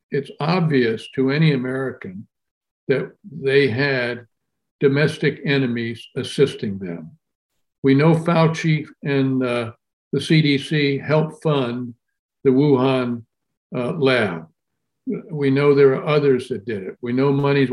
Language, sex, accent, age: English, male, American, 60-79